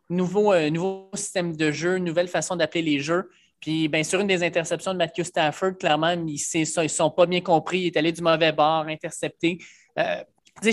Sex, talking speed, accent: male, 195 wpm, Canadian